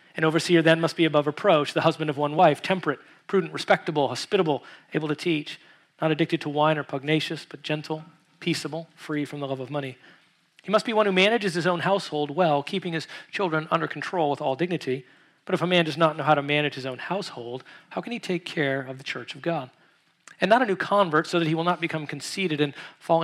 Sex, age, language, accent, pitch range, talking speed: male, 40-59, English, American, 145-170 Hz, 230 wpm